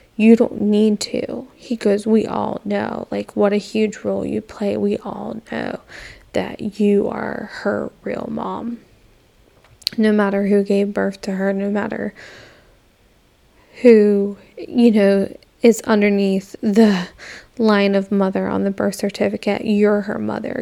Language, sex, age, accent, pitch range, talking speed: English, female, 10-29, American, 195-220 Hz, 145 wpm